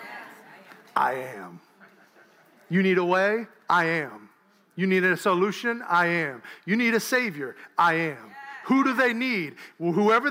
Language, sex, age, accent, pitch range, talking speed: English, male, 40-59, American, 170-245 Hz, 145 wpm